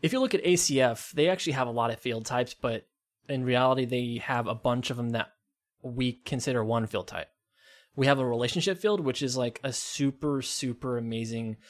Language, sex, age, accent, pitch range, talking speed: English, male, 20-39, American, 115-145 Hz, 205 wpm